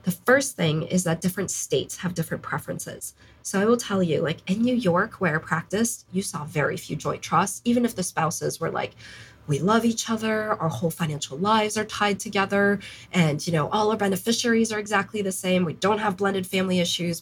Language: English